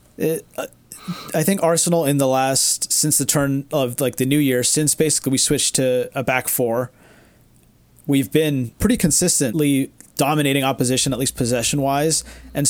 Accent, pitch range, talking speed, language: American, 120-145 Hz, 155 wpm, English